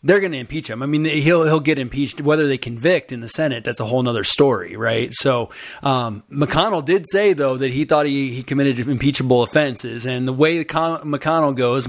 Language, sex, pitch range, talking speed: English, male, 120-150 Hz, 210 wpm